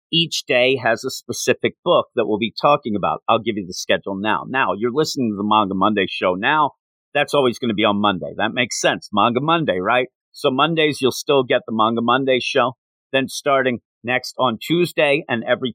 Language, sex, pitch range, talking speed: English, male, 105-135 Hz, 210 wpm